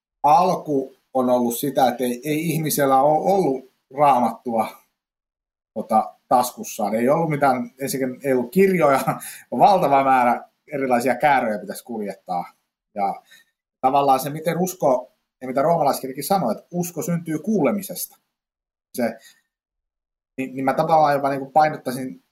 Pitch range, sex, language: 130-160 Hz, male, Finnish